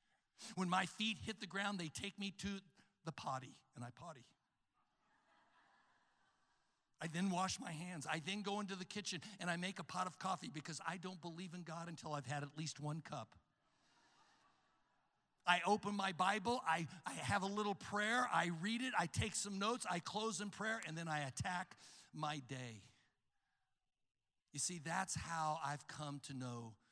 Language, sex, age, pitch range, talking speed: English, male, 60-79, 130-185 Hz, 180 wpm